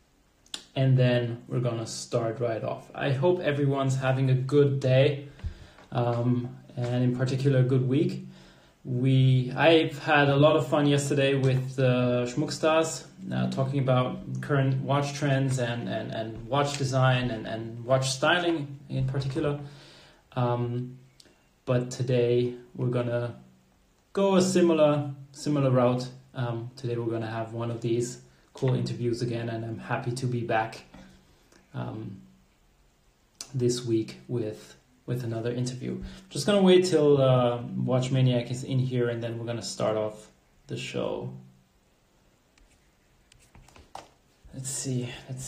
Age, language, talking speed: 20-39, English, 140 wpm